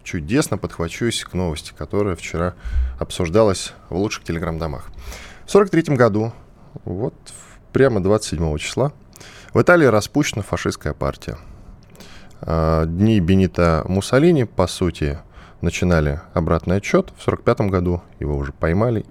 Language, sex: Russian, male